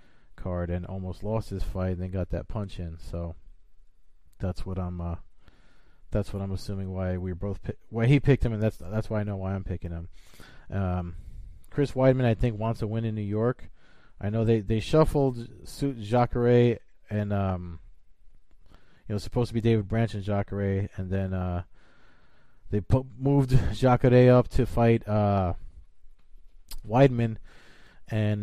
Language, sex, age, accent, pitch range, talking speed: English, male, 20-39, American, 90-115 Hz, 175 wpm